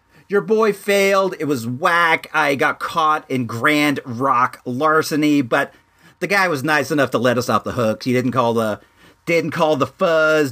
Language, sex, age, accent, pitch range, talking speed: English, male, 40-59, American, 125-185 Hz, 190 wpm